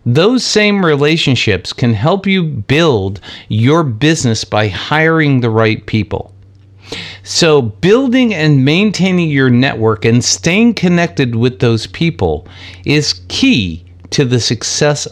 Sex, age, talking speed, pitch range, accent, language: male, 50-69, 125 wpm, 100-155 Hz, American, English